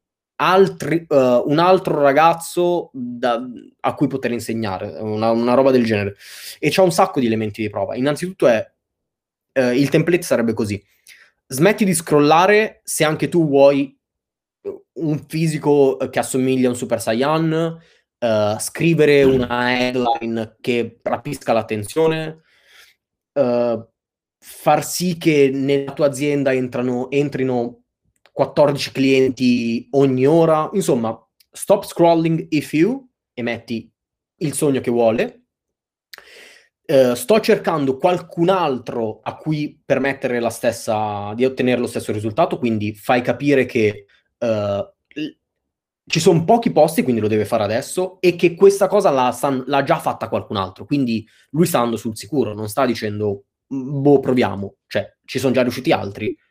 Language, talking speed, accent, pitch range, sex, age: Italian, 135 wpm, native, 120-165 Hz, male, 20-39